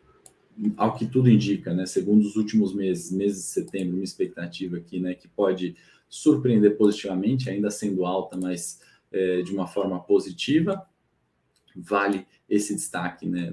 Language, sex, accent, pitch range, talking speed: Portuguese, male, Brazilian, 100-125 Hz, 145 wpm